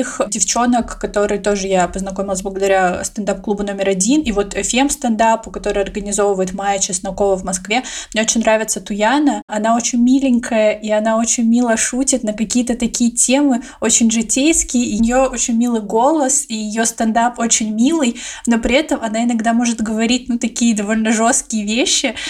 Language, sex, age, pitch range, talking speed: Russian, female, 20-39, 205-245 Hz, 155 wpm